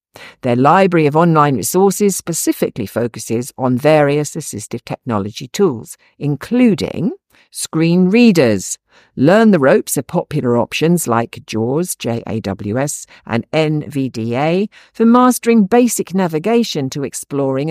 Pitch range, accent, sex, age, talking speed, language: 125-190 Hz, British, female, 50-69, 110 wpm, English